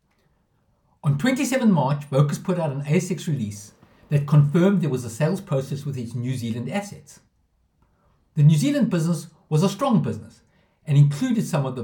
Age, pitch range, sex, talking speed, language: 60-79, 125-175 Hz, male, 170 wpm, English